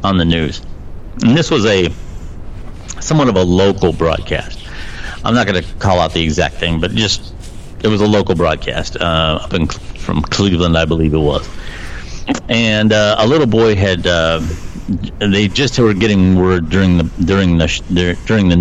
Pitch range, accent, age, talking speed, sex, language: 85-100 Hz, American, 50-69, 175 wpm, male, English